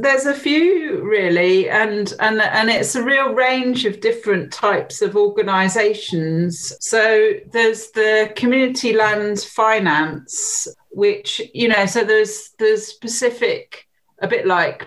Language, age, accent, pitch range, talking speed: English, 40-59, British, 170-220 Hz, 130 wpm